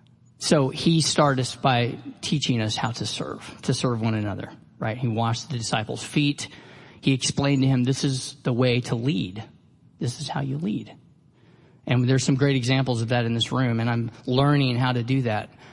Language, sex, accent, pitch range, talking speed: English, male, American, 125-150 Hz, 200 wpm